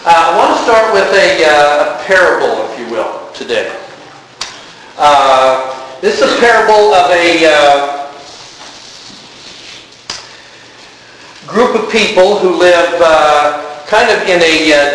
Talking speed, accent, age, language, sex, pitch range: 135 wpm, American, 50-69, English, male, 140-175 Hz